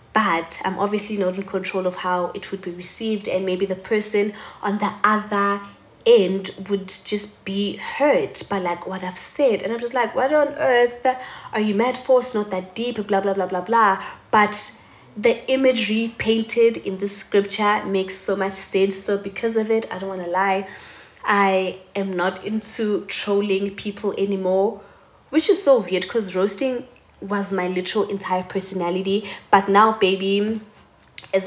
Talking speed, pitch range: 175 wpm, 185-210 Hz